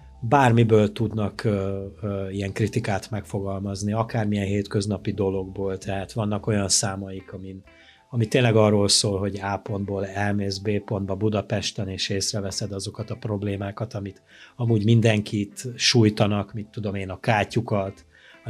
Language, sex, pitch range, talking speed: Hungarian, male, 100-115 Hz, 135 wpm